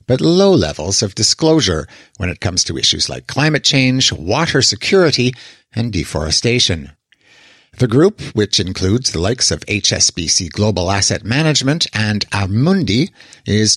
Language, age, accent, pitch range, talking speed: English, 60-79, American, 95-135 Hz, 135 wpm